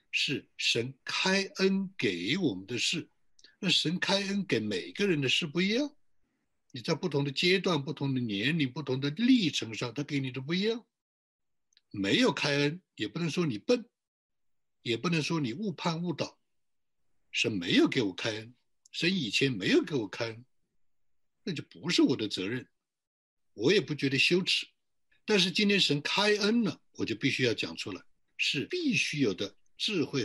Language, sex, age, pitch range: Chinese, male, 60-79, 130-185 Hz